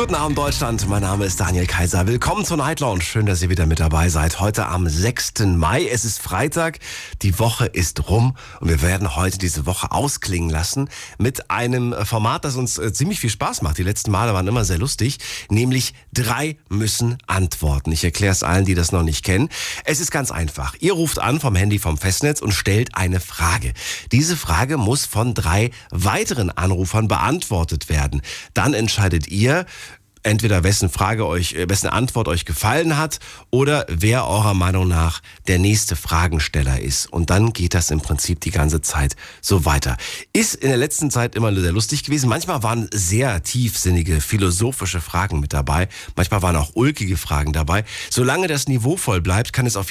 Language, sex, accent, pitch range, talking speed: German, male, German, 85-120 Hz, 185 wpm